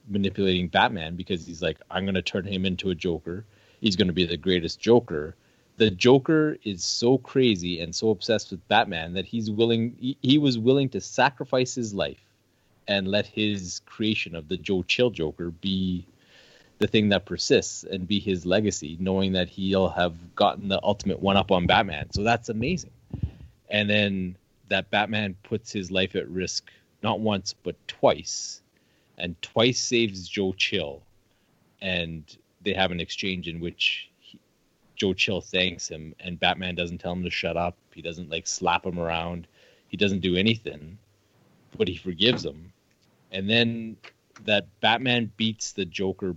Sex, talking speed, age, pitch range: male, 170 wpm, 30-49, 90-110 Hz